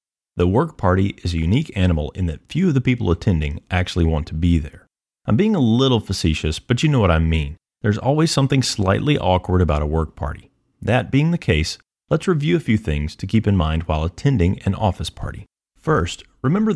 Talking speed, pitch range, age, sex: 210 wpm, 85-115 Hz, 30-49, male